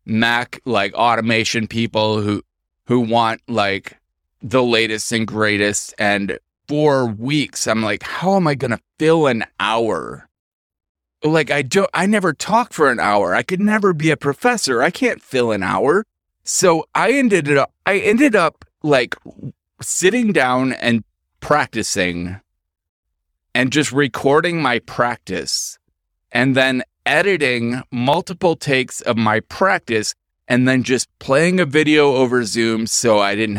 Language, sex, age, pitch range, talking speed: English, male, 30-49, 105-150 Hz, 145 wpm